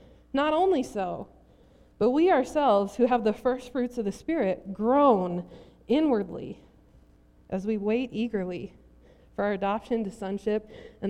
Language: English